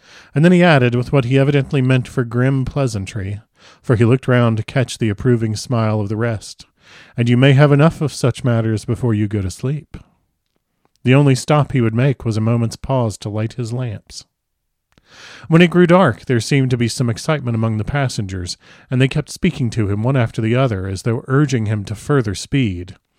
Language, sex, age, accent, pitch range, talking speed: English, male, 40-59, American, 115-140 Hz, 210 wpm